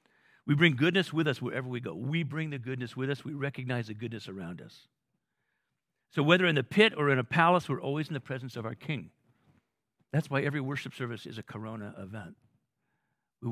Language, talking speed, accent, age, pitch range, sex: English, 210 wpm, American, 50-69, 125-175 Hz, male